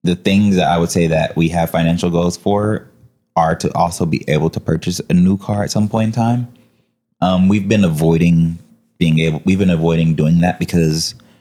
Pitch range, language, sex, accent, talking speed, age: 80-90 Hz, English, male, American, 205 wpm, 20-39